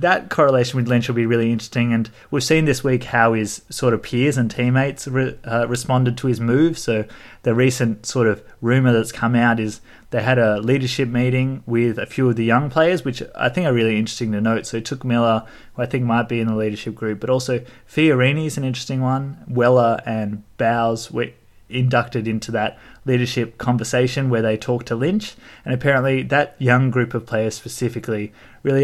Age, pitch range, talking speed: 20-39, 115-125 Hz, 205 wpm